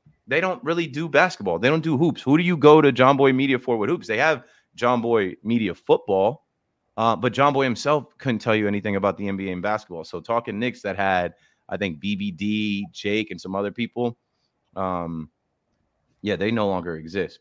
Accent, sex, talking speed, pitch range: American, male, 205 wpm, 100-130 Hz